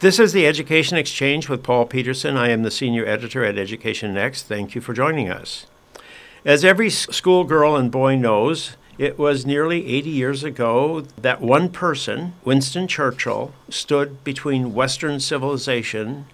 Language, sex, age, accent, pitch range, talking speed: English, male, 60-79, American, 115-145 Hz, 155 wpm